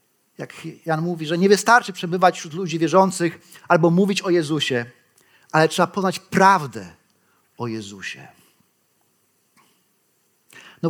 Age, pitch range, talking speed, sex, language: 30-49, 155-210 Hz, 115 wpm, male, Polish